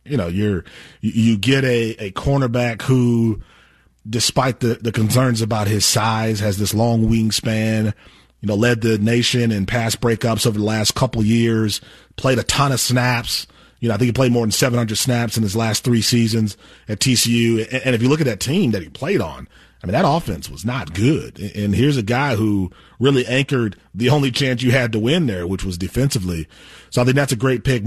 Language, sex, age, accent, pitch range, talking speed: English, male, 30-49, American, 110-130 Hz, 215 wpm